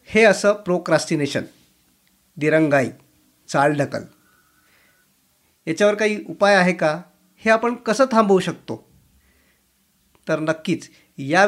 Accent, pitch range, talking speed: native, 145-185 Hz, 100 wpm